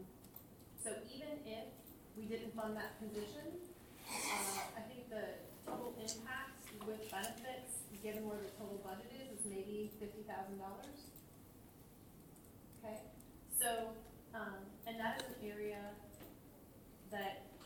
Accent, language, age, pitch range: American, English, 30-49, 195-220 Hz